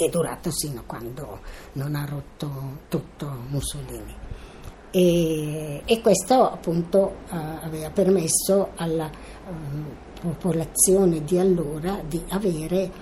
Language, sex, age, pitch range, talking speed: Italian, female, 60-79, 145-175 Hz, 110 wpm